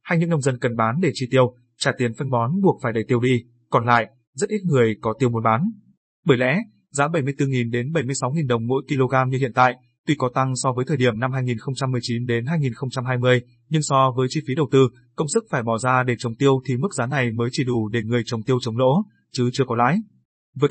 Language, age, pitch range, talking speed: Vietnamese, 20-39, 120-140 Hz, 240 wpm